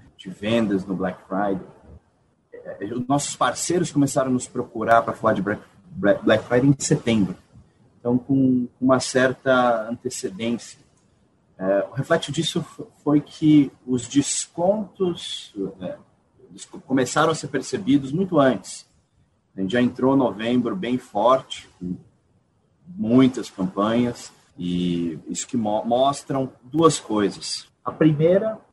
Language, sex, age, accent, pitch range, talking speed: Portuguese, male, 30-49, Brazilian, 105-145 Hz, 115 wpm